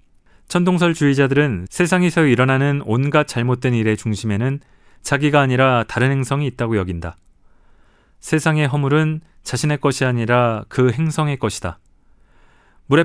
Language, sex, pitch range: Korean, male, 105-140 Hz